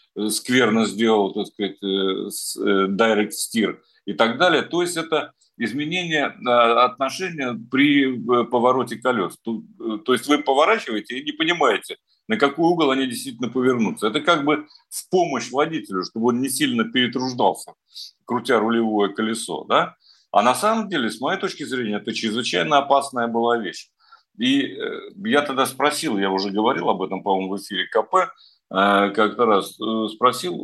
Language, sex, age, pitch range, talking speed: Russian, male, 50-69, 110-150 Hz, 145 wpm